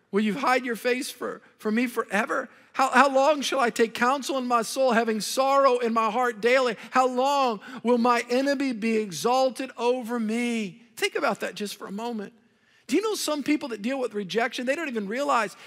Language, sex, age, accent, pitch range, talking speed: English, male, 50-69, American, 205-255 Hz, 205 wpm